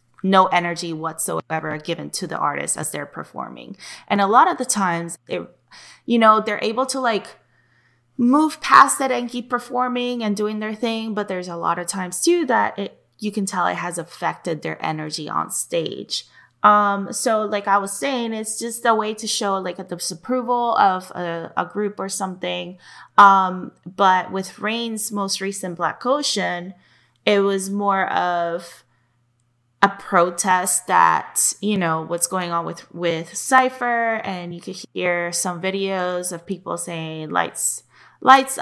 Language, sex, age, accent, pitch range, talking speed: English, female, 20-39, American, 175-225 Hz, 165 wpm